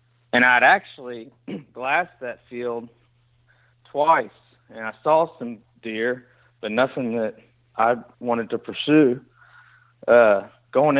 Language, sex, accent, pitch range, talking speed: English, male, American, 115-130 Hz, 115 wpm